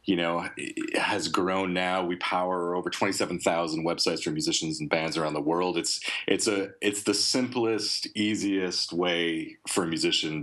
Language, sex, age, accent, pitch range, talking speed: English, male, 30-49, American, 75-90 Hz, 180 wpm